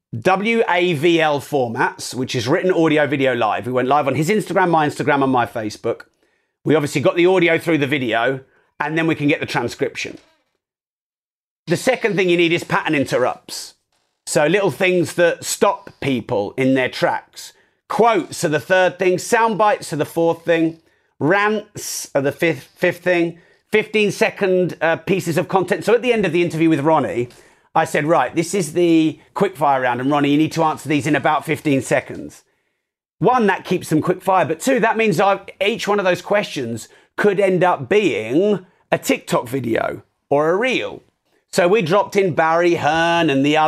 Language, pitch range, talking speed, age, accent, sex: English, 150-185 Hz, 190 wpm, 40-59, British, male